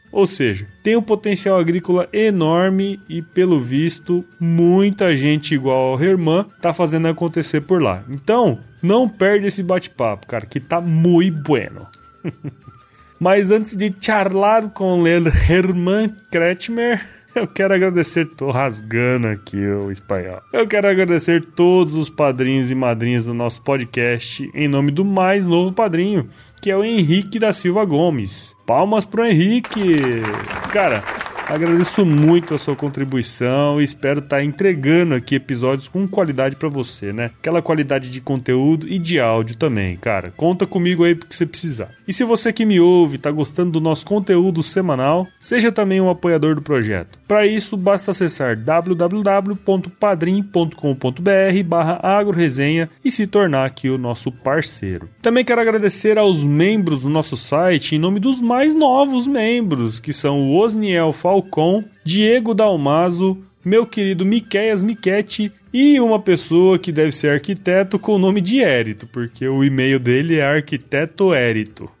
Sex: male